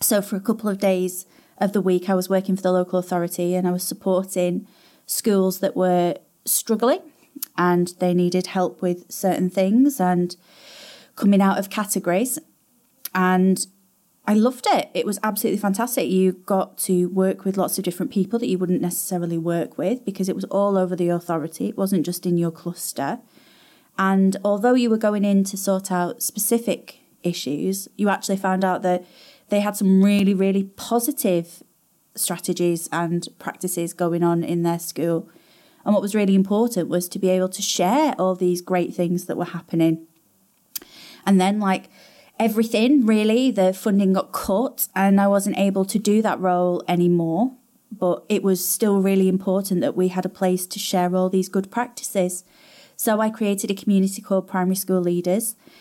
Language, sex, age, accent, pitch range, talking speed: English, female, 30-49, British, 180-210 Hz, 175 wpm